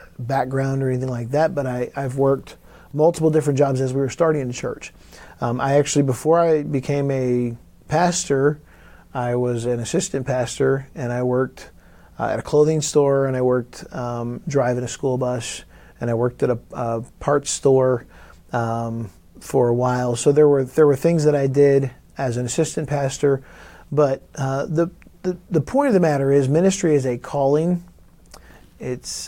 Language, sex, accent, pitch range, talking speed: English, male, American, 125-145 Hz, 180 wpm